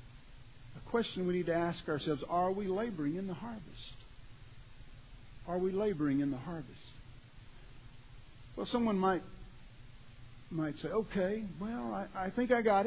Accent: American